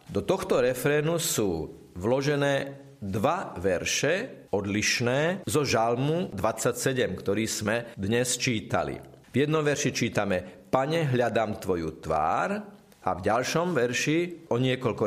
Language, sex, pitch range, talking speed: Slovak, male, 110-150 Hz, 115 wpm